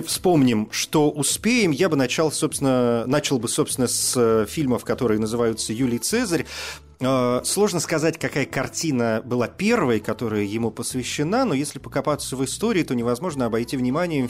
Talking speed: 145 wpm